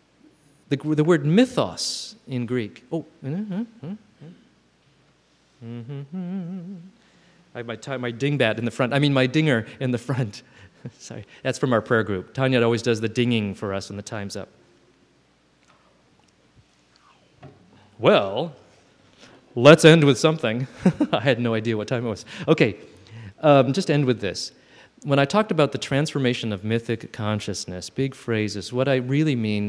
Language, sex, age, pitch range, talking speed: English, male, 30-49, 115-160 Hz, 155 wpm